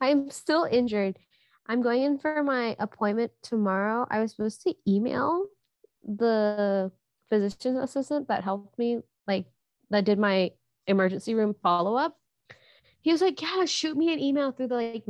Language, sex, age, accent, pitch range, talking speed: English, female, 20-39, American, 185-235 Hz, 155 wpm